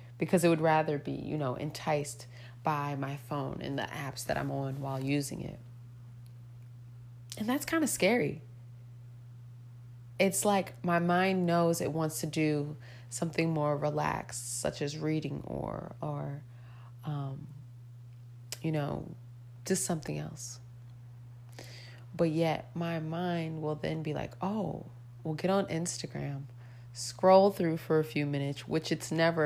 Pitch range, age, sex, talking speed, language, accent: 120-170 Hz, 20-39, female, 145 wpm, English, American